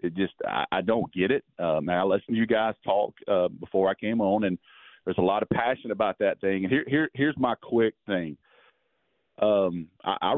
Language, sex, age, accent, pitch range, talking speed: English, male, 40-59, American, 110-165 Hz, 225 wpm